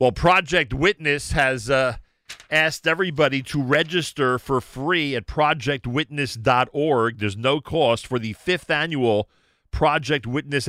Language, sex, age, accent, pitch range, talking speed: English, male, 50-69, American, 110-145 Hz, 125 wpm